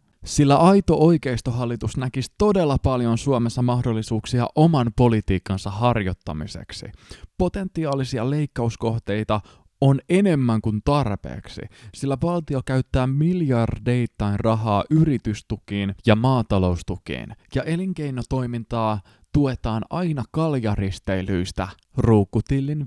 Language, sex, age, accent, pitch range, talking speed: Finnish, male, 20-39, native, 100-140 Hz, 80 wpm